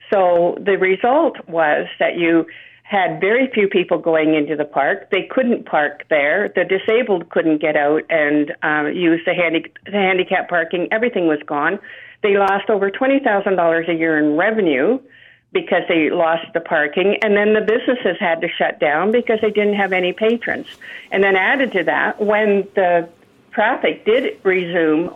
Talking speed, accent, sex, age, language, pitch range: 165 wpm, American, female, 50-69, English, 170-210 Hz